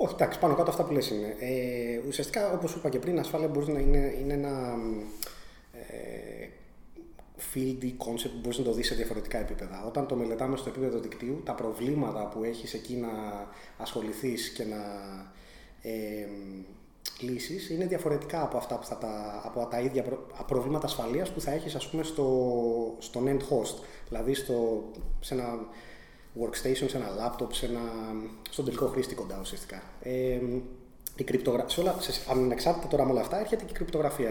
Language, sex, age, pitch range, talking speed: Greek, male, 30-49, 120-155 Hz, 150 wpm